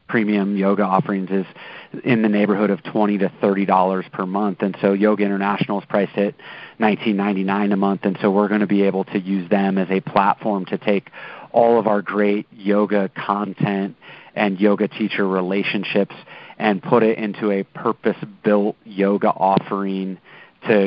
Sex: male